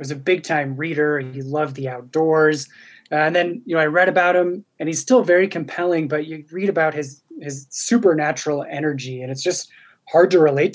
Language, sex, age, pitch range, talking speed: English, male, 20-39, 140-170 Hz, 205 wpm